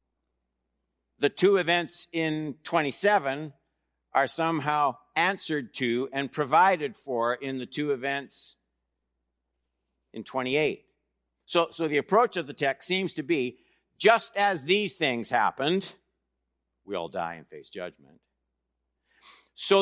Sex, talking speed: male, 120 wpm